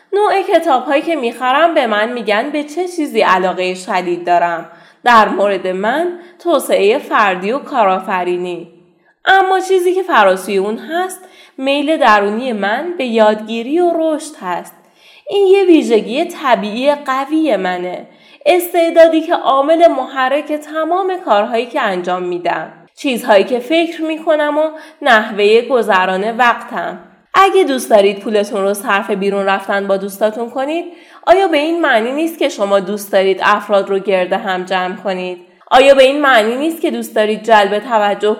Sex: female